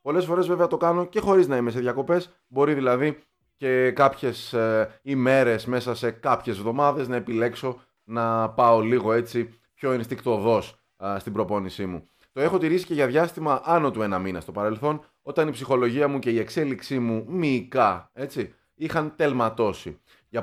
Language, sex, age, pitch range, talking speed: Greek, male, 20-39, 120-160 Hz, 170 wpm